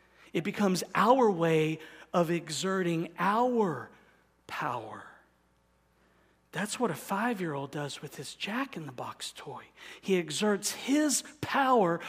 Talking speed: 105 wpm